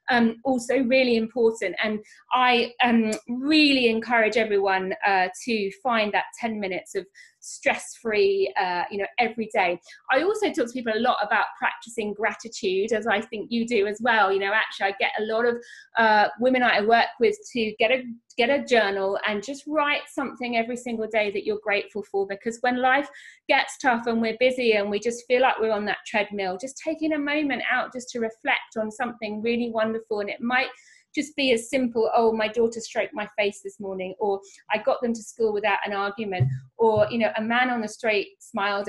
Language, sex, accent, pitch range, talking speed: English, female, British, 205-255 Hz, 200 wpm